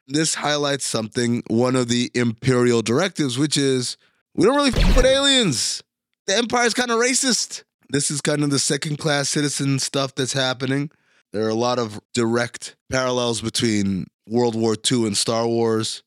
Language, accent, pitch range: English, American, 105-145 Hz